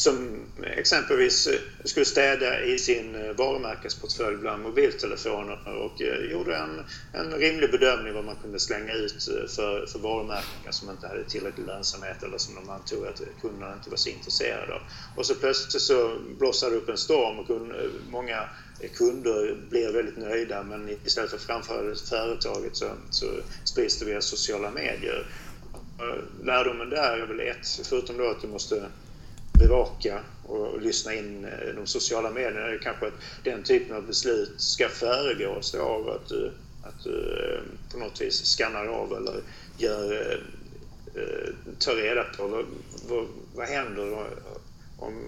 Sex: male